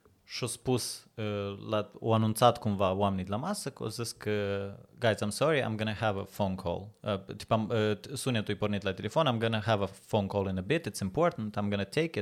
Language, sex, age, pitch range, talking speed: Russian, male, 30-49, 100-120 Hz, 225 wpm